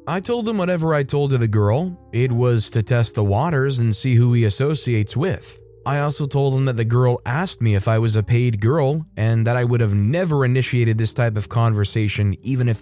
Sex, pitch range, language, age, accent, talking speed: male, 110-140 Hz, English, 20-39, American, 230 wpm